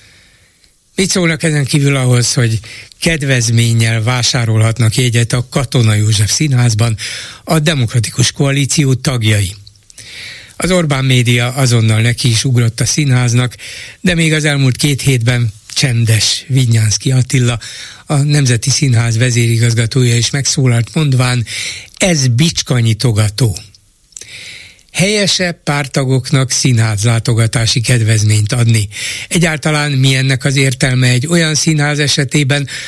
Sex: male